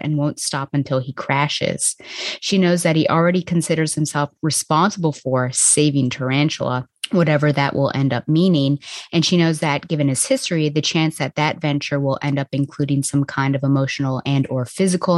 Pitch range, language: 140-165 Hz, English